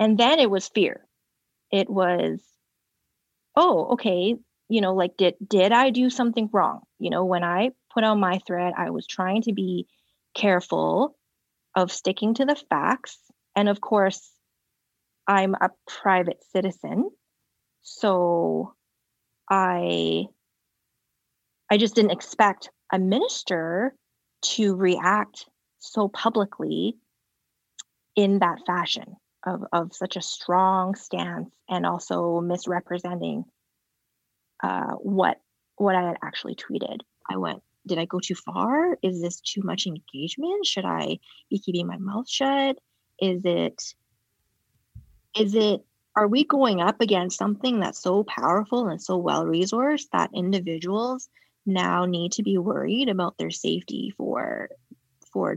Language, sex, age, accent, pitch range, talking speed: English, female, 30-49, American, 175-220 Hz, 130 wpm